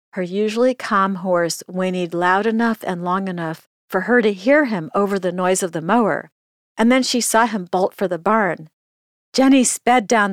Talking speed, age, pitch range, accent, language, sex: 190 wpm, 50-69, 160-215 Hz, American, English, female